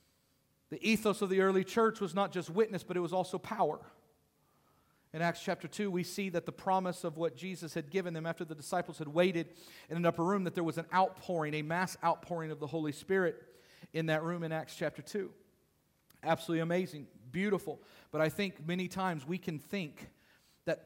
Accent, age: American, 40-59